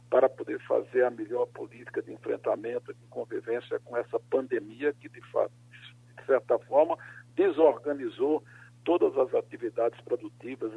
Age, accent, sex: 60-79, Brazilian, male